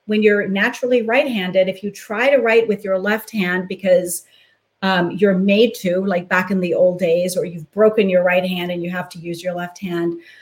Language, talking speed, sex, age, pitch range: English, 220 wpm, female, 40-59, 180-225 Hz